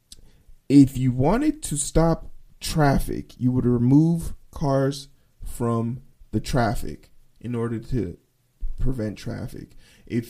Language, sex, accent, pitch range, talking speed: English, male, American, 120-160 Hz, 110 wpm